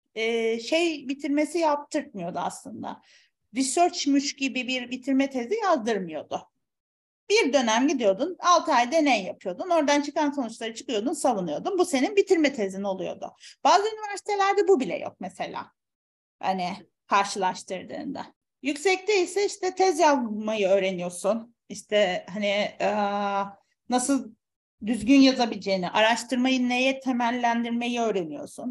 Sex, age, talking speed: female, 40-59, 105 wpm